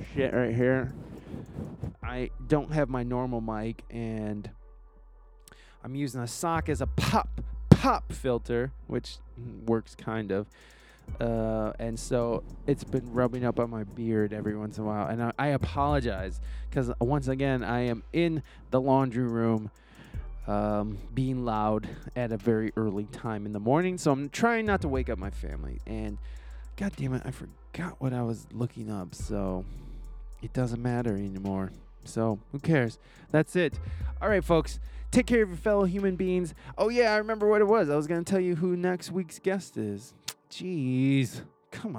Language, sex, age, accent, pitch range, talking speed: English, male, 20-39, American, 110-160 Hz, 175 wpm